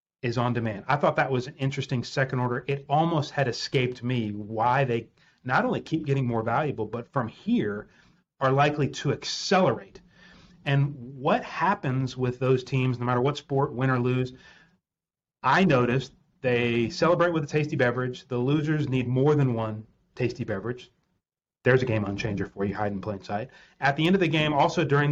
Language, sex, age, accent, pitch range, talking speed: English, male, 30-49, American, 125-150 Hz, 185 wpm